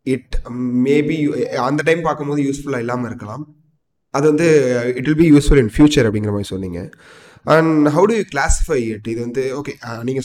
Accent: native